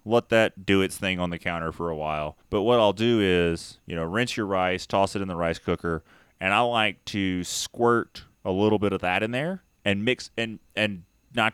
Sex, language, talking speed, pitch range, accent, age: male, English, 230 wpm, 95-120 Hz, American, 30-49